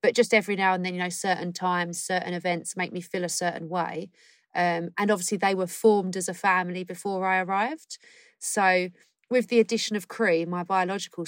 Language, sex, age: English, female, 30-49